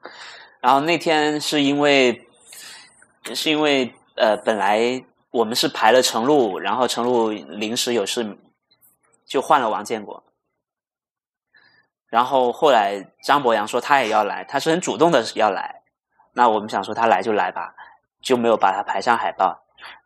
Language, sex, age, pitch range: Chinese, male, 20-39, 110-140 Hz